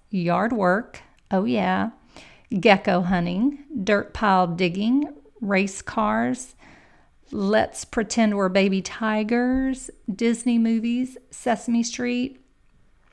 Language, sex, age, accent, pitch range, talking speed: English, female, 40-59, American, 185-225 Hz, 90 wpm